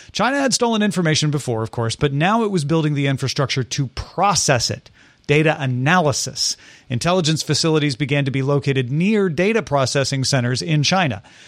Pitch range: 135-175 Hz